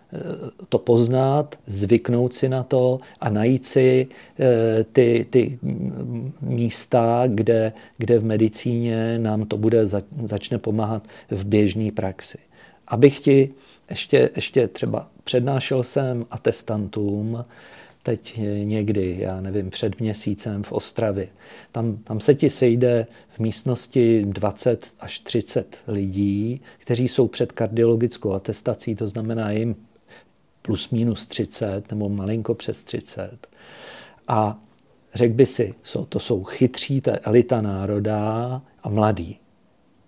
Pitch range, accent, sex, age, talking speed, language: 105-125 Hz, Czech, male, 40-59, 120 wpm, English